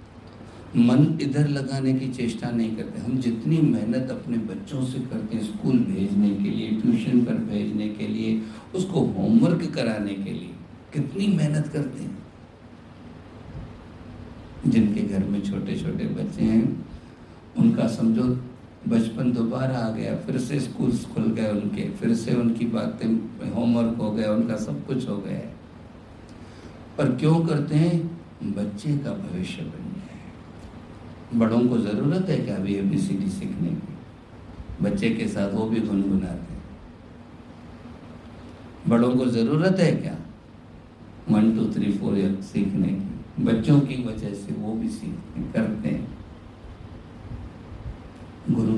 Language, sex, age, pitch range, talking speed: Hindi, male, 60-79, 105-140 Hz, 130 wpm